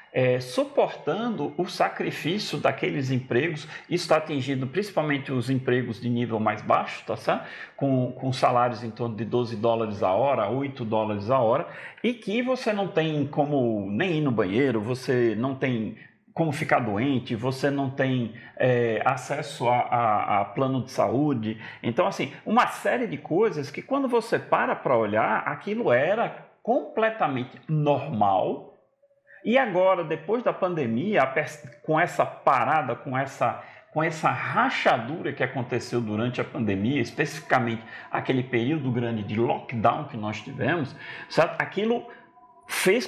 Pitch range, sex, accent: 120-175 Hz, male, Brazilian